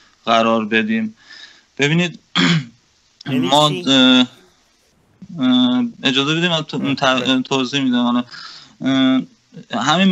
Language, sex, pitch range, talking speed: Persian, male, 125-165 Hz, 60 wpm